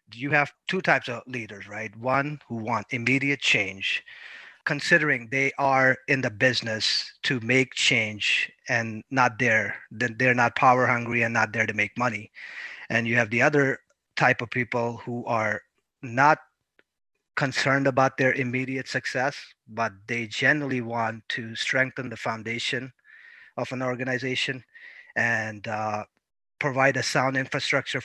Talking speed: 145 wpm